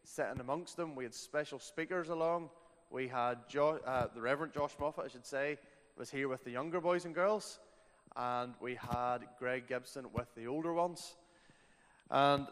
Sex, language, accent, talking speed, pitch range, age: male, English, Irish, 175 wpm, 125-160 Hz, 20-39